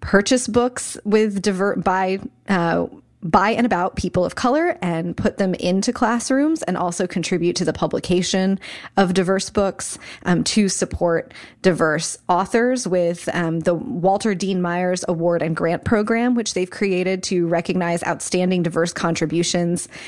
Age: 20-39